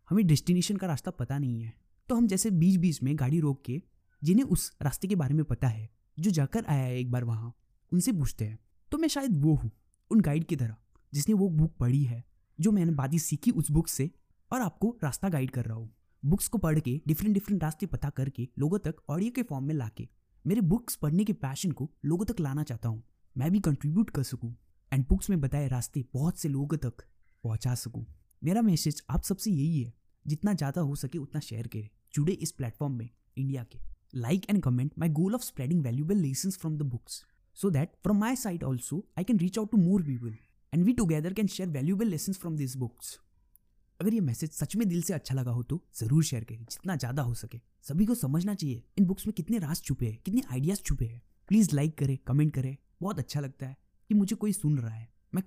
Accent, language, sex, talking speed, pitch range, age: native, Hindi, male, 195 wpm, 125-185 Hz, 20-39